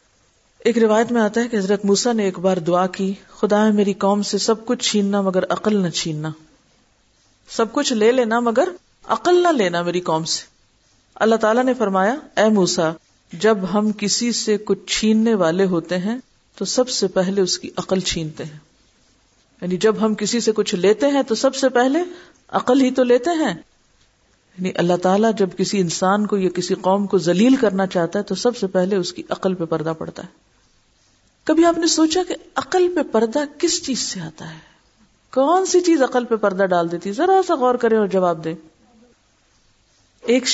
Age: 50-69